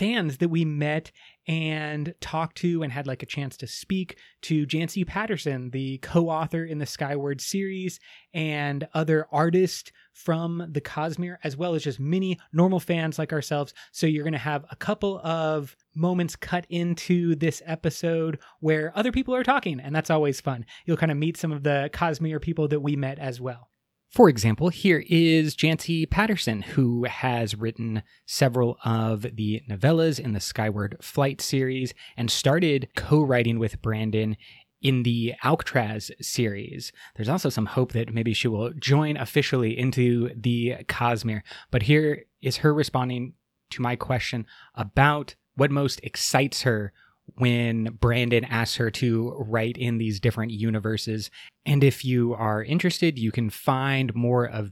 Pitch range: 115-160 Hz